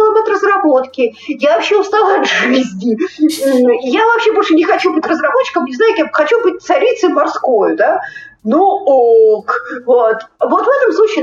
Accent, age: native, 50-69